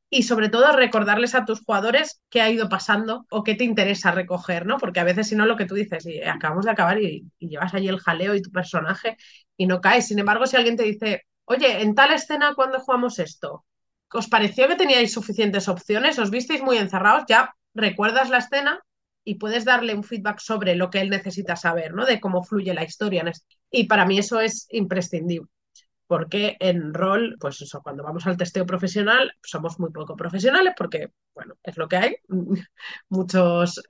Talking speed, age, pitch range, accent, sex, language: 200 wpm, 30-49, 180-225 Hz, Spanish, female, Spanish